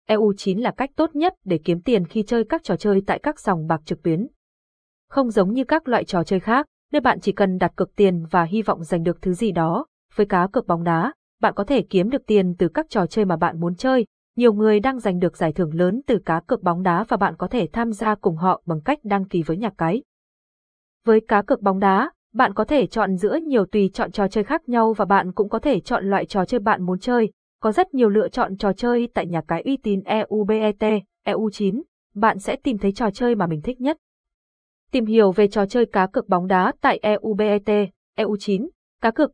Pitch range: 185-235 Hz